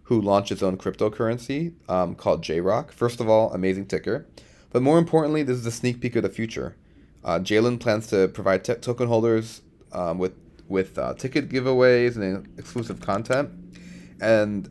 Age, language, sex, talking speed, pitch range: 30-49, English, male, 170 wpm, 95-120 Hz